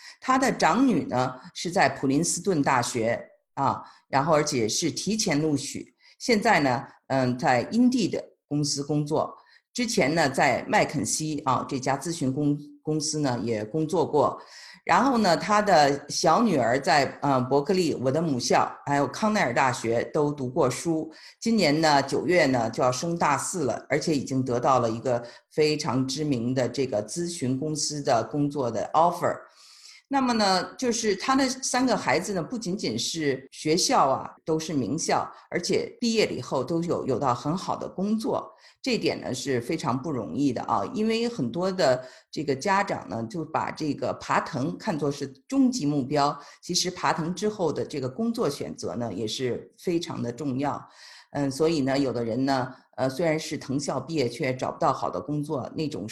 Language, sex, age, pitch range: Chinese, female, 50-69, 130-190 Hz